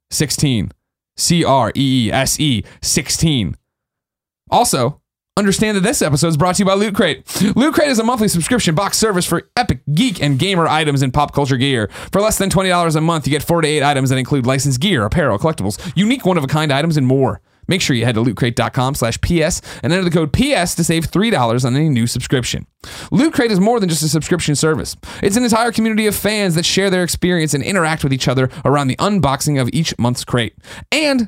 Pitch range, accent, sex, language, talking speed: 130-195 Hz, American, male, English, 200 wpm